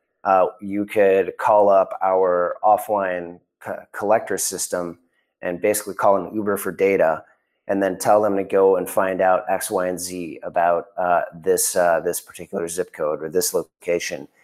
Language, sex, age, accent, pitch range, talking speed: English, male, 30-49, American, 90-100 Hz, 170 wpm